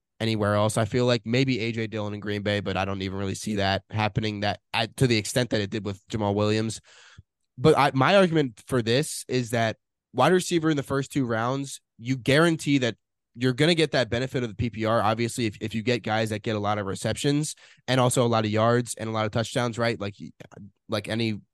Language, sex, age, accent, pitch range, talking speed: English, male, 20-39, American, 110-130 Hz, 235 wpm